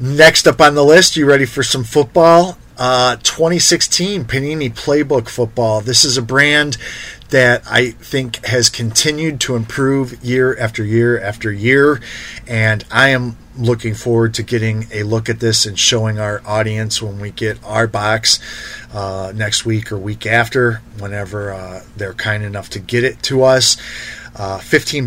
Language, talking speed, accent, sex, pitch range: English, 165 wpm, American, male, 110-135 Hz